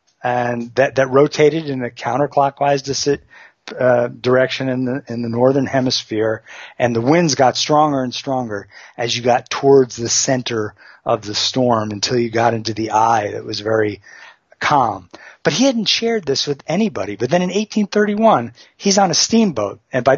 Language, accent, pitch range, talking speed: English, American, 120-150 Hz, 180 wpm